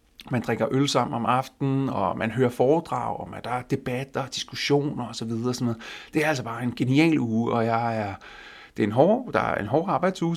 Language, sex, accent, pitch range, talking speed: Danish, male, native, 115-150 Hz, 215 wpm